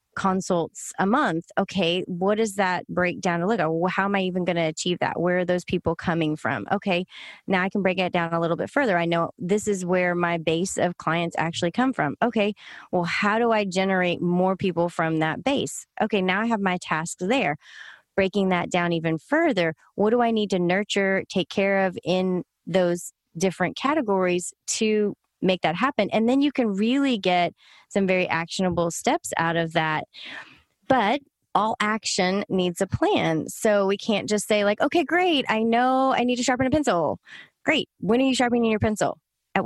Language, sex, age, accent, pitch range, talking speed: English, female, 30-49, American, 175-215 Hz, 200 wpm